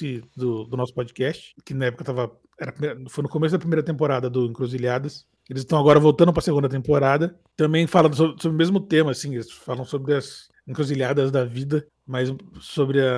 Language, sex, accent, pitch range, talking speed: Portuguese, male, Brazilian, 130-155 Hz, 190 wpm